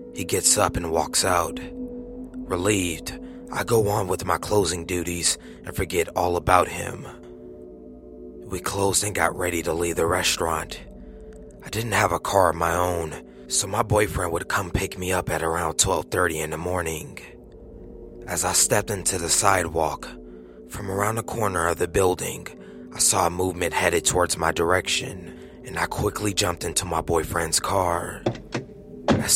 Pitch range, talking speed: 80-100 Hz, 165 wpm